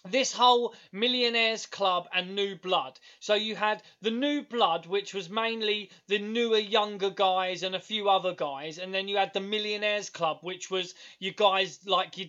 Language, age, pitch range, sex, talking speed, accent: English, 20-39, 180-205 Hz, male, 185 wpm, British